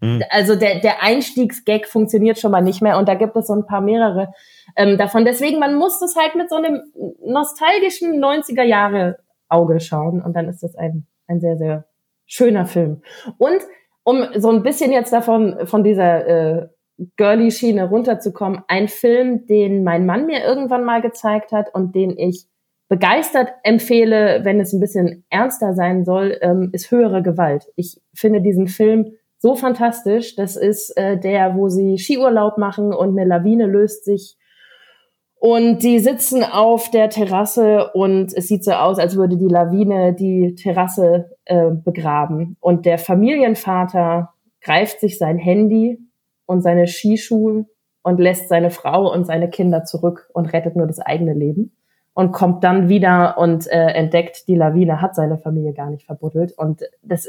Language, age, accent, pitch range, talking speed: German, 20-39, German, 175-225 Hz, 165 wpm